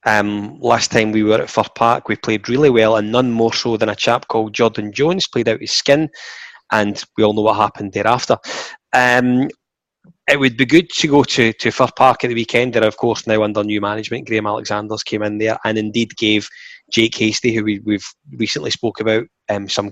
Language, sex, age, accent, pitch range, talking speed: English, male, 20-39, British, 105-120 Hz, 215 wpm